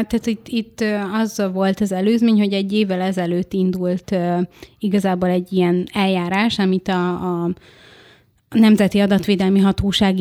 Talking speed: 130 wpm